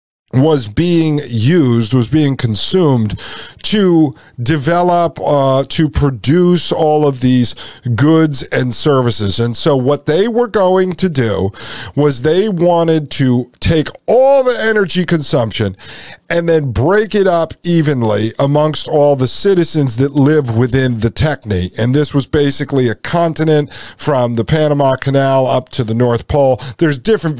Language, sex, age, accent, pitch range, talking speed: English, male, 50-69, American, 125-160 Hz, 145 wpm